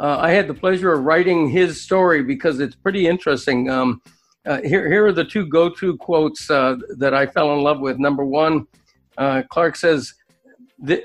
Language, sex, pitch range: English, male, 140-175 Hz